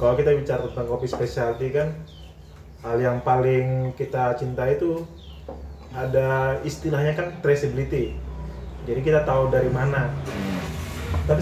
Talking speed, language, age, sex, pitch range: 120 wpm, Indonesian, 20-39, male, 85-130 Hz